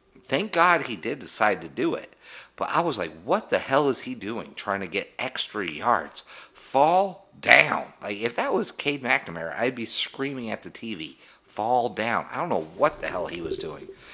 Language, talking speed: English, 205 wpm